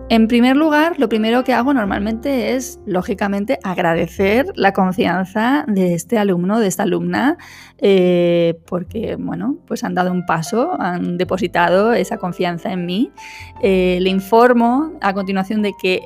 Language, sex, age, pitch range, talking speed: Spanish, female, 20-39, 185-225 Hz, 150 wpm